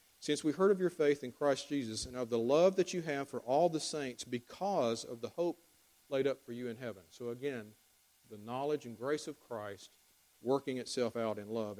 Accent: American